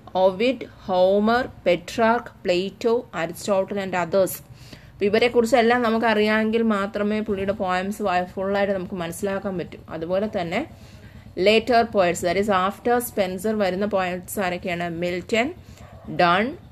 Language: English